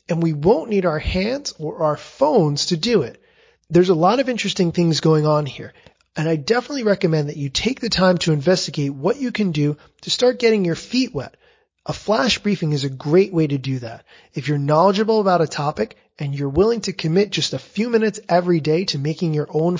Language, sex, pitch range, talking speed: English, male, 150-200 Hz, 220 wpm